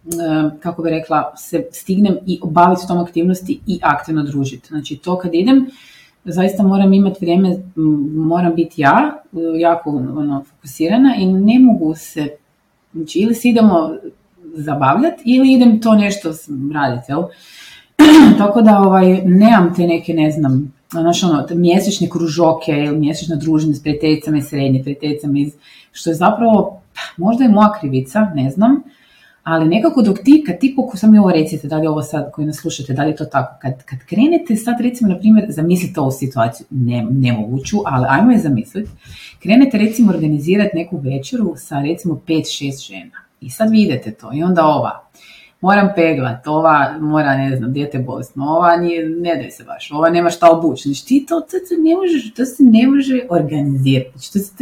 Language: Croatian